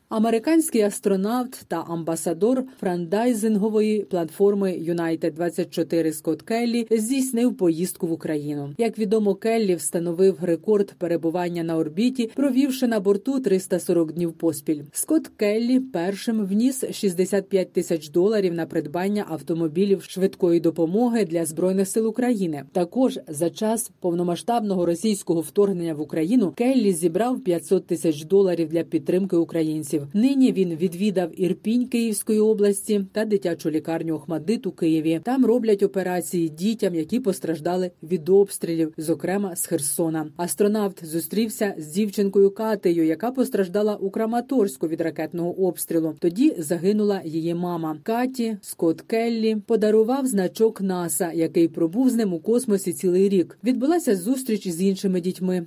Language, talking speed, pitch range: Ukrainian, 125 wpm, 170-220 Hz